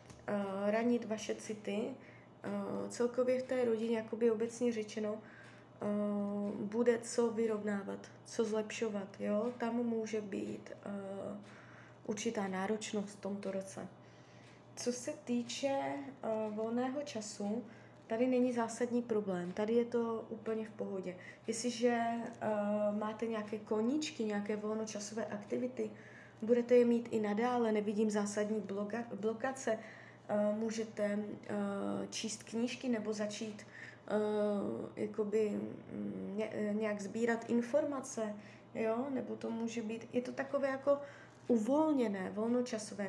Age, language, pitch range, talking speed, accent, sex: 20-39, Czech, 210-235 Hz, 105 wpm, native, female